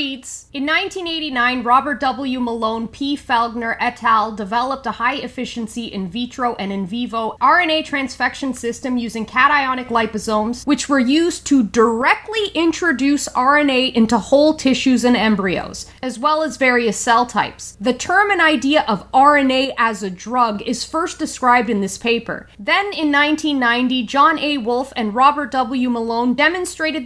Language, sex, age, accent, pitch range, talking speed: English, female, 20-39, American, 230-285 Hz, 150 wpm